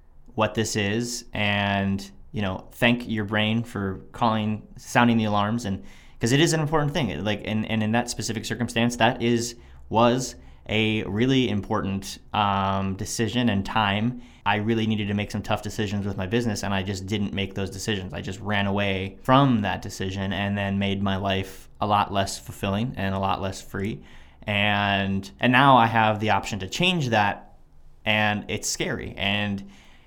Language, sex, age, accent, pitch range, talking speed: English, male, 20-39, American, 95-115 Hz, 180 wpm